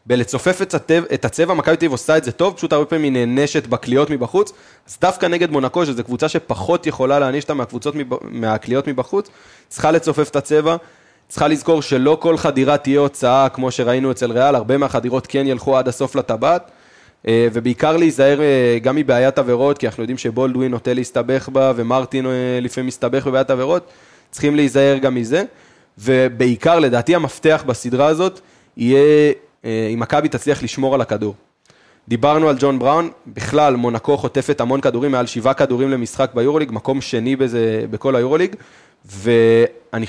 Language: Hebrew